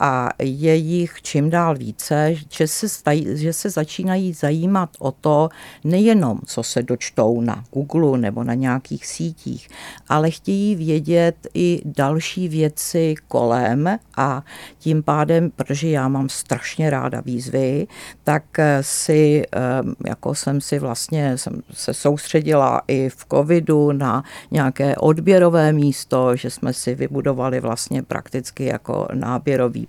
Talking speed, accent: 130 wpm, native